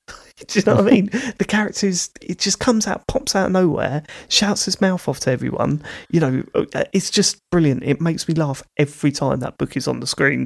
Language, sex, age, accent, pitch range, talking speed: English, male, 30-49, British, 130-160 Hz, 220 wpm